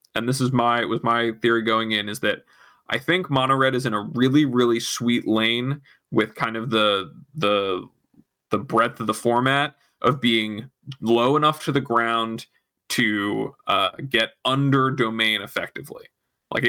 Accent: American